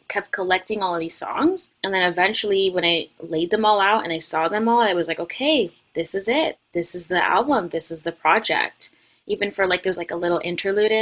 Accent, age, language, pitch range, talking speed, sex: American, 20-39, English, 170-215 Hz, 235 wpm, female